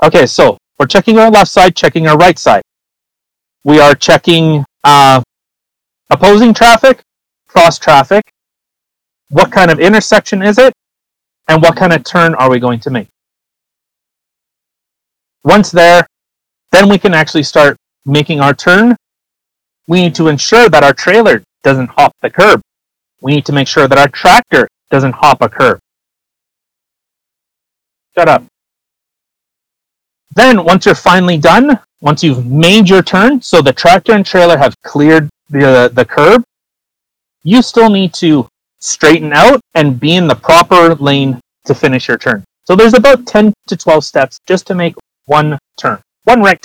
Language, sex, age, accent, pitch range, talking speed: English, male, 30-49, American, 145-195 Hz, 155 wpm